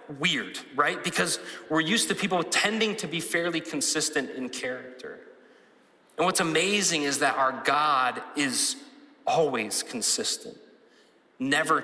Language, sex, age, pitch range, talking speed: English, male, 30-49, 140-230 Hz, 125 wpm